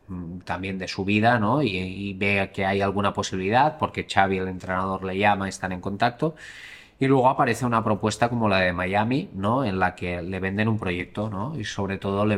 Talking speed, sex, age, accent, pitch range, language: 210 wpm, male, 20-39, Spanish, 95-115 Hz, Spanish